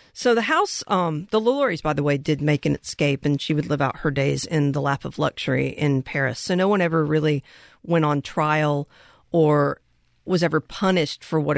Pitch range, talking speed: 145-165 Hz, 210 wpm